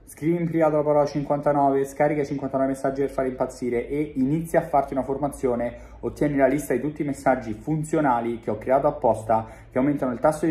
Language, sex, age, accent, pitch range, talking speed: Italian, male, 30-49, native, 115-145 Hz, 200 wpm